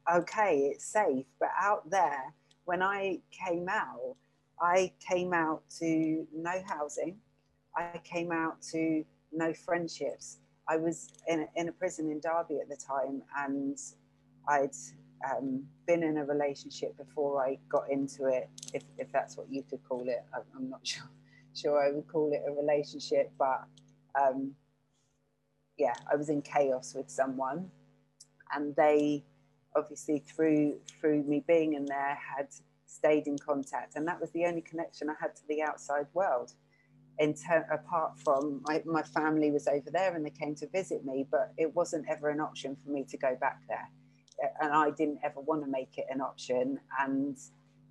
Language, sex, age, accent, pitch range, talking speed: English, female, 30-49, British, 135-160 Hz, 170 wpm